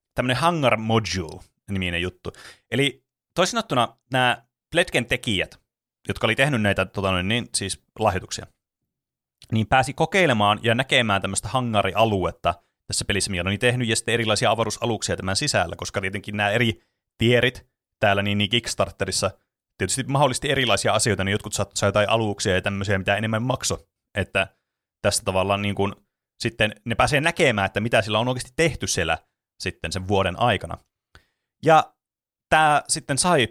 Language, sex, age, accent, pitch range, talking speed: Finnish, male, 30-49, native, 95-125 Hz, 145 wpm